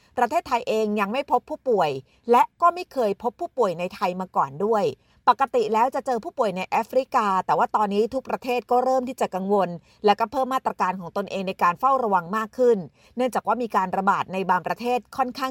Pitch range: 195-255 Hz